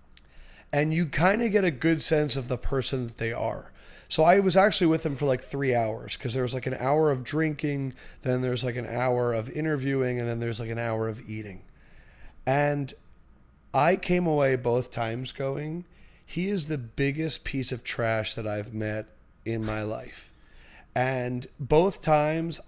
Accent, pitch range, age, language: American, 120-150 Hz, 30-49, English